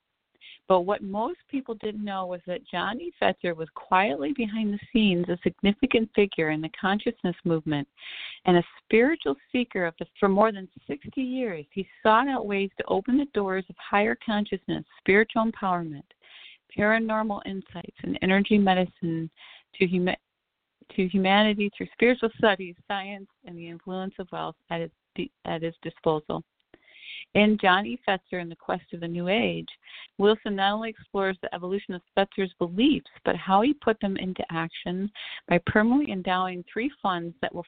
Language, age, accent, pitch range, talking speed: English, 50-69, American, 175-220 Hz, 165 wpm